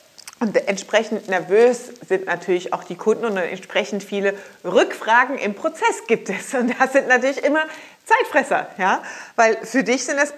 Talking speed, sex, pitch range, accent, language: 160 wpm, female, 200-270 Hz, German, German